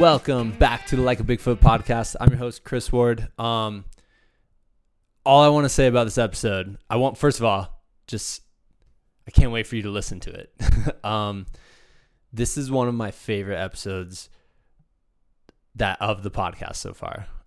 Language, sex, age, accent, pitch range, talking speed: English, male, 20-39, American, 100-120 Hz, 175 wpm